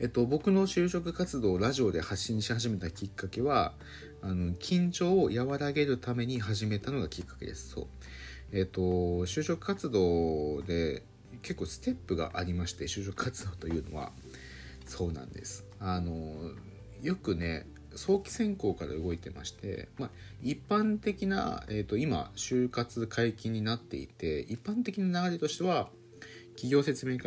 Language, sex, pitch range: Japanese, male, 90-140 Hz